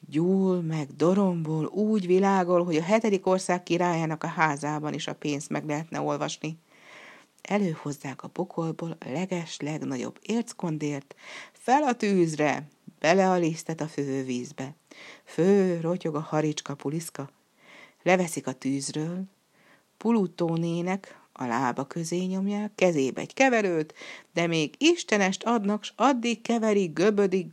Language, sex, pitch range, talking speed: Hungarian, female, 150-195 Hz, 120 wpm